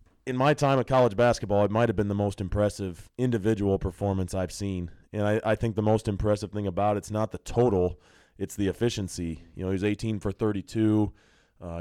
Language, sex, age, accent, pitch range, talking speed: English, male, 20-39, American, 95-110 Hz, 205 wpm